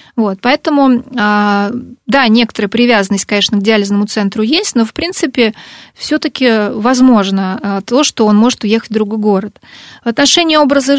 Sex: female